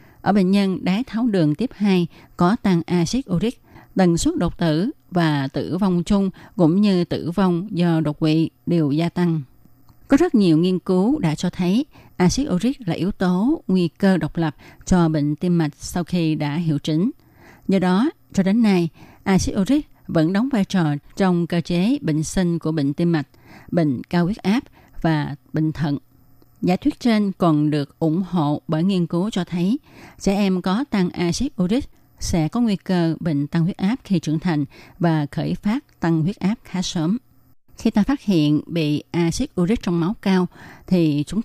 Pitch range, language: 155-195 Hz, Vietnamese